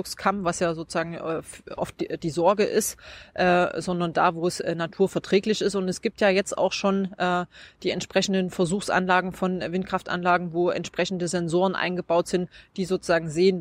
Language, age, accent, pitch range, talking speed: German, 20-39, German, 170-190 Hz, 180 wpm